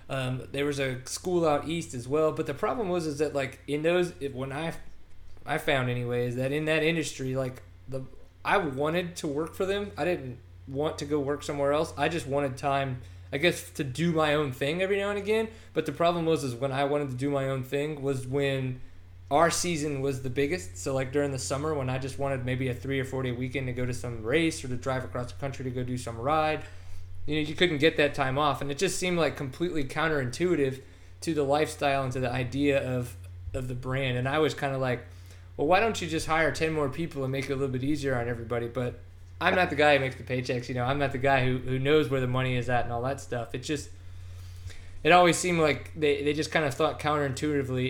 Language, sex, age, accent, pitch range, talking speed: English, male, 20-39, American, 125-155 Hz, 250 wpm